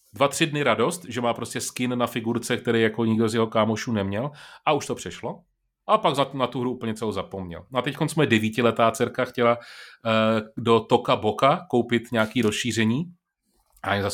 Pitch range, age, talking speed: 110-135 Hz, 30-49, 195 wpm